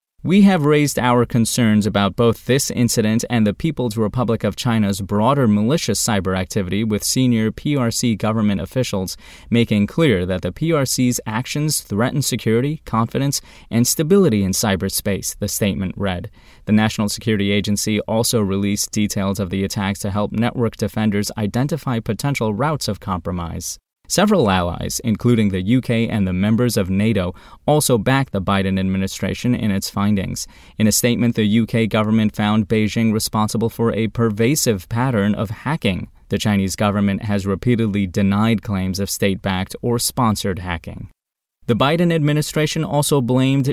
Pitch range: 100-125 Hz